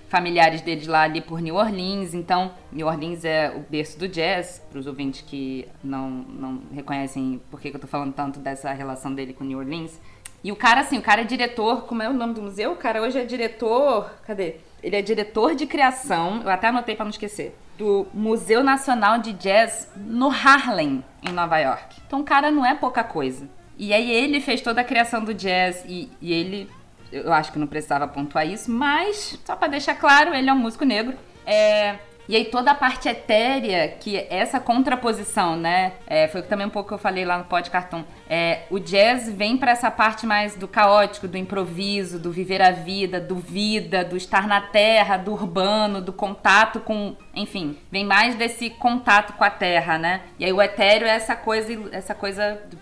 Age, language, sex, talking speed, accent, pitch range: 20-39, English, female, 200 wpm, Brazilian, 170-225 Hz